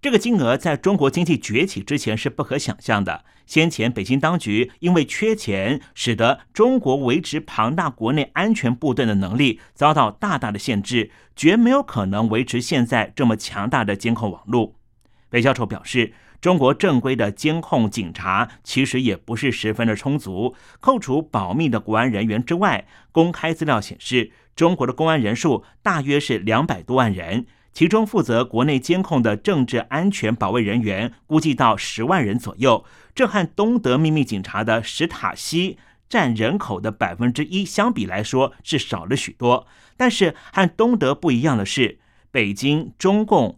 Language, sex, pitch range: Chinese, male, 115-160 Hz